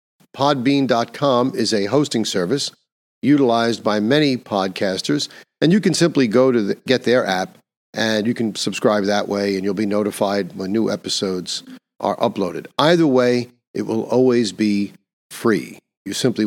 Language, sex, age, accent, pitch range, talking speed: English, male, 50-69, American, 105-130 Hz, 155 wpm